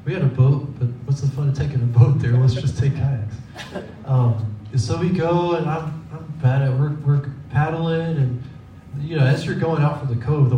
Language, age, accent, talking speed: English, 20-39, American, 240 wpm